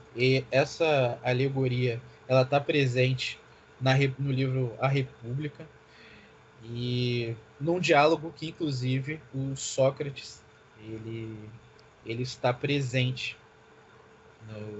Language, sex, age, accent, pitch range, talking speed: Portuguese, male, 20-39, Brazilian, 120-140 Hz, 95 wpm